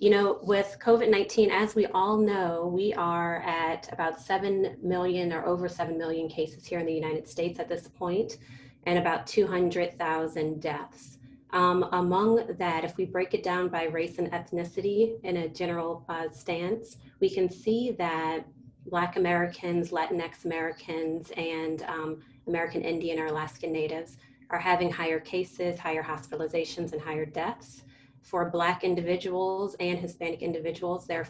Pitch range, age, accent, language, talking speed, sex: 160-180 Hz, 30-49, American, English, 150 wpm, female